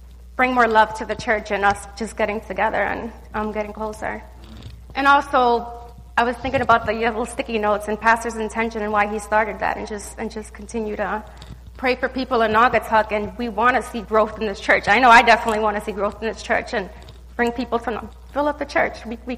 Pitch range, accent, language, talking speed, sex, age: 205-235 Hz, American, English, 230 wpm, female, 30-49